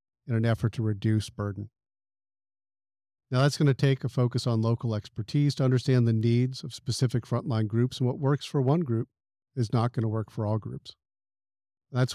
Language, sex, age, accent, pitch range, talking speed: English, male, 50-69, American, 110-135 Hz, 195 wpm